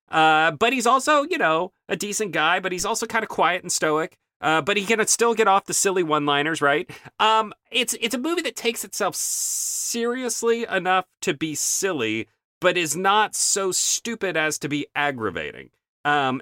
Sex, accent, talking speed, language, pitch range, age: male, American, 190 wpm, English, 135-200 Hz, 30-49